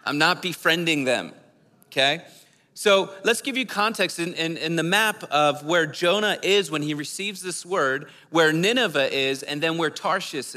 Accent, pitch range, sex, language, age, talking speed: American, 150-190 Hz, male, English, 40-59, 175 wpm